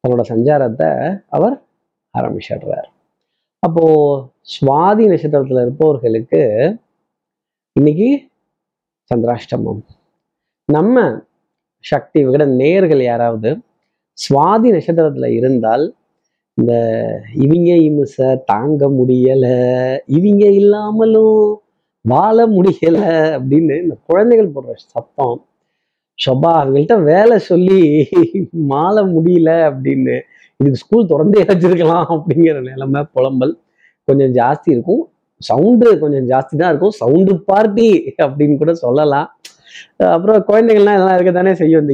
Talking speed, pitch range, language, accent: 90 wpm, 130-195 Hz, Tamil, native